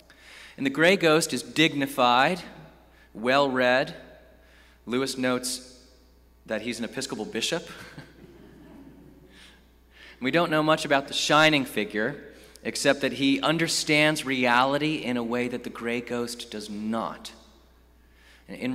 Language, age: English, 30-49